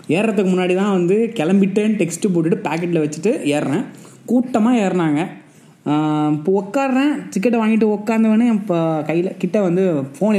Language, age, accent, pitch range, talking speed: Tamil, 20-39, native, 145-190 Hz, 135 wpm